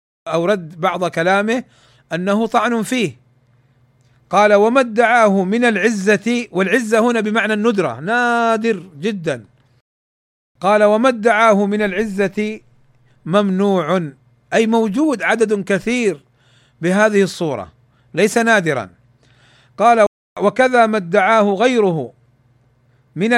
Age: 40-59